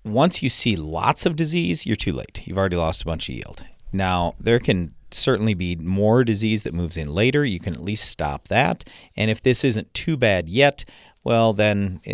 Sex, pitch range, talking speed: male, 85-110 Hz, 210 wpm